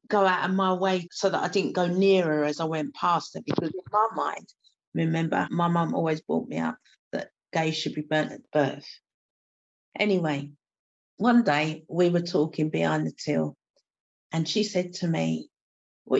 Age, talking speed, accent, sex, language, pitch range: 40-59, 185 wpm, British, female, English, 145-195 Hz